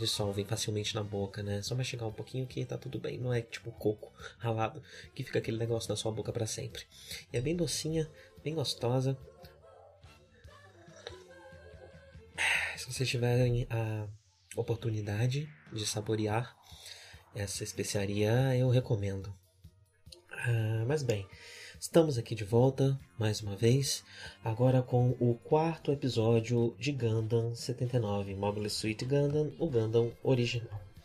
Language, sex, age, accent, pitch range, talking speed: Portuguese, male, 20-39, Brazilian, 105-135 Hz, 130 wpm